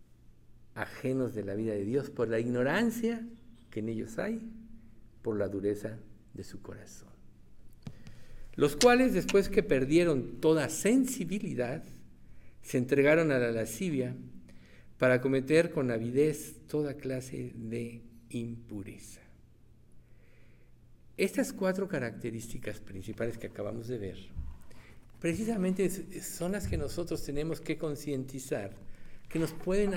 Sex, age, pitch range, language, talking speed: male, 60-79, 115-160 Hz, Spanish, 115 wpm